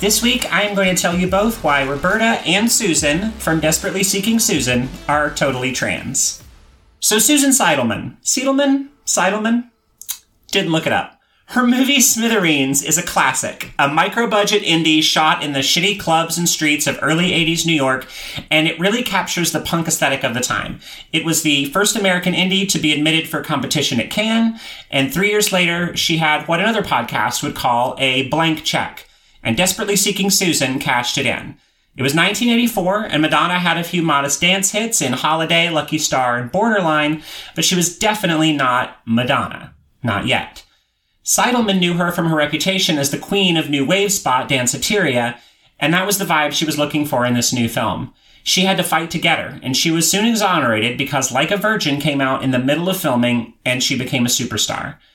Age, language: 30-49, English